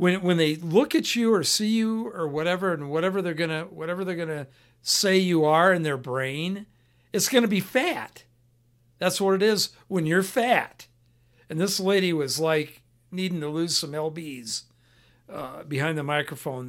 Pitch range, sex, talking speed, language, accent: 125-185 Hz, male, 175 wpm, English, American